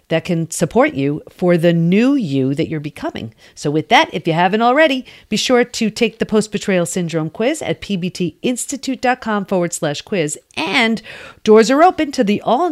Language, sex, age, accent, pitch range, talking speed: English, female, 40-59, American, 160-240 Hz, 180 wpm